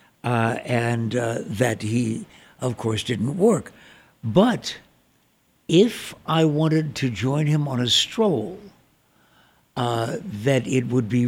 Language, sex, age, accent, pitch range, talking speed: English, male, 60-79, American, 115-140 Hz, 130 wpm